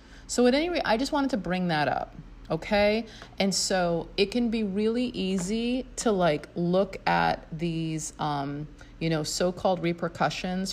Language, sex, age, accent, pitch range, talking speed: English, female, 30-49, American, 145-170 Hz, 170 wpm